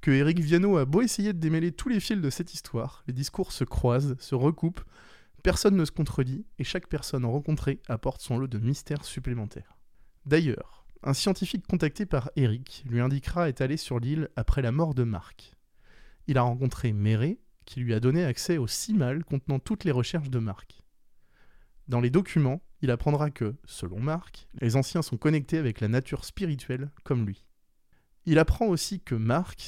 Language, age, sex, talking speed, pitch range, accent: French, 20-39, male, 185 wpm, 120-165 Hz, French